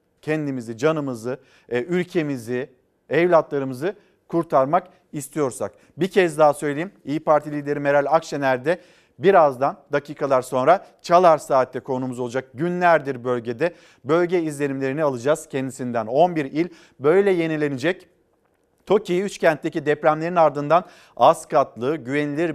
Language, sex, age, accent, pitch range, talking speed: Turkish, male, 50-69, native, 125-170 Hz, 105 wpm